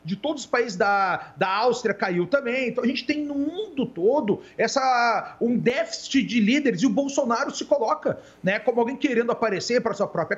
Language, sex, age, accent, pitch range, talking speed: Portuguese, male, 40-59, Brazilian, 195-270 Hz, 190 wpm